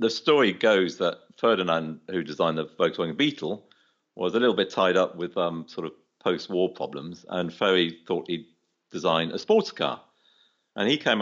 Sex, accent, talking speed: male, British, 175 wpm